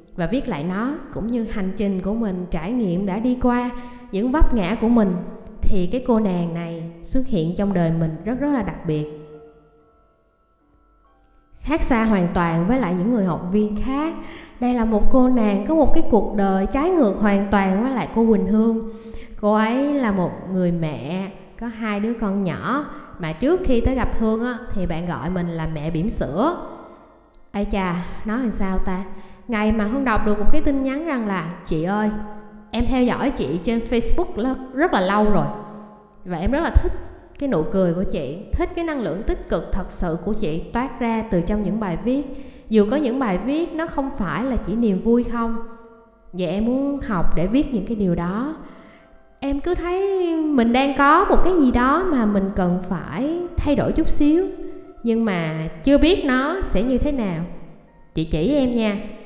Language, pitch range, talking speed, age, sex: Vietnamese, 190-265 Hz, 205 wpm, 20-39, female